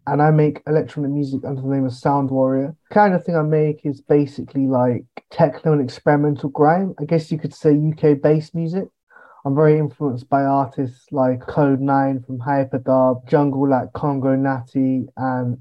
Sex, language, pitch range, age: male, English, 130-155 Hz, 20-39